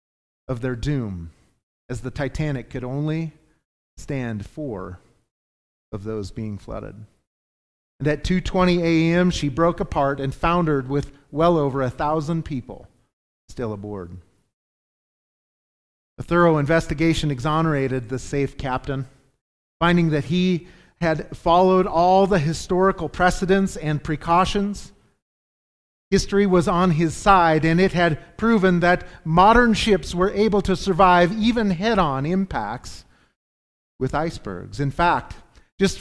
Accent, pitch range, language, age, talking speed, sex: American, 125-180 Hz, English, 40-59, 120 wpm, male